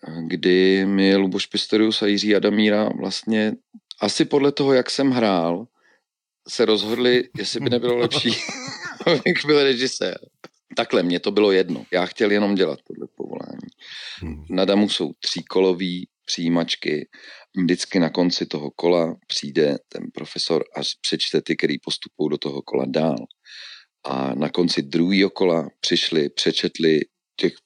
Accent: native